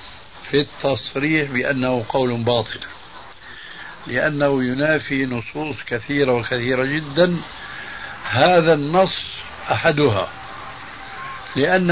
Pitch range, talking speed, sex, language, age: 120-155 Hz, 75 wpm, male, Arabic, 60-79